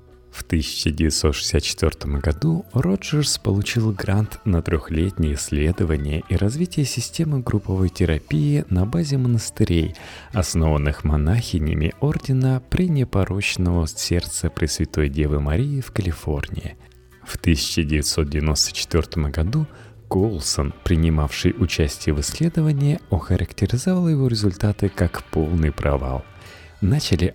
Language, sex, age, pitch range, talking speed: Russian, male, 30-49, 80-115 Hz, 90 wpm